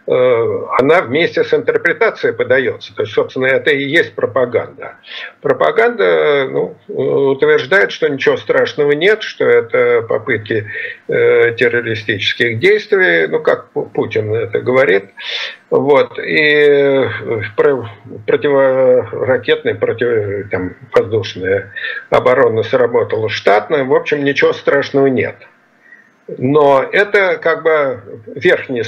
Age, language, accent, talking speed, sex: 50-69, Russian, native, 95 wpm, male